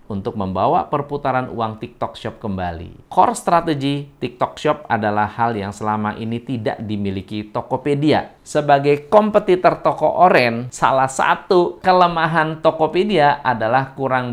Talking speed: 120 wpm